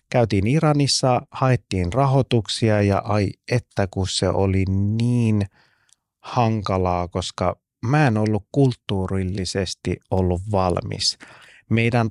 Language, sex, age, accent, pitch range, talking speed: Finnish, male, 30-49, native, 95-125 Hz, 100 wpm